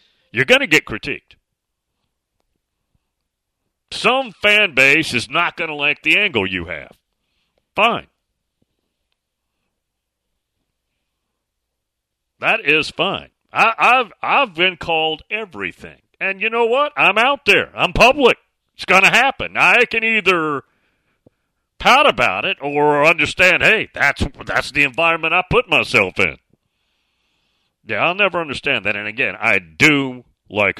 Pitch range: 150-235 Hz